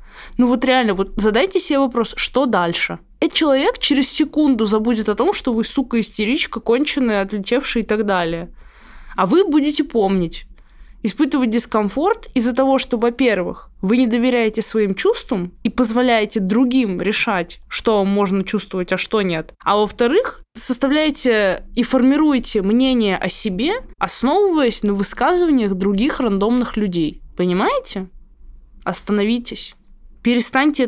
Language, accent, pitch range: Russian, native, 210-275 Hz